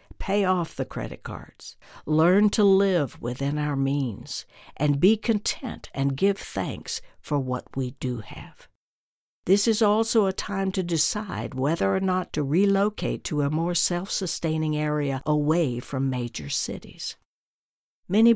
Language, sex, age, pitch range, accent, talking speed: English, female, 60-79, 135-195 Hz, American, 145 wpm